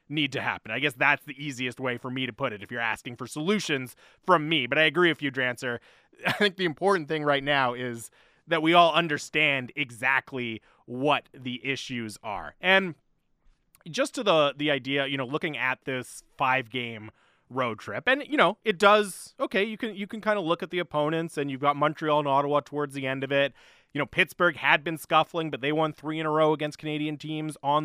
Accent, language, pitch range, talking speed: American, English, 130-180 Hz, 220 wpm